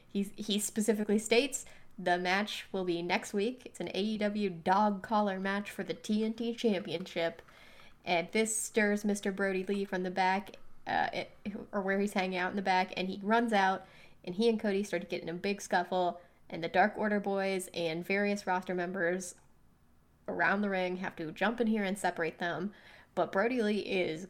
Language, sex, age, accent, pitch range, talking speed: English, female, 10-29, American, 180-215 Hz, 185 wpm